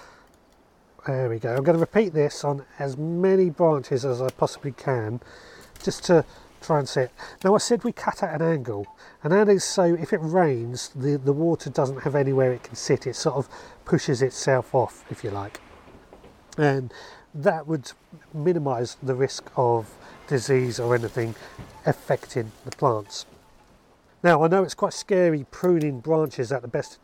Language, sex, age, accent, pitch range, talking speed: English, male, 40-59, British, 130-175 Hz, 175 wpm